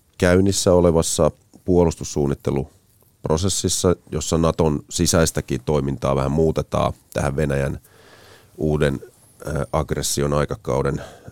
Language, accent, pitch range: Finnish, native, 70-90 Hz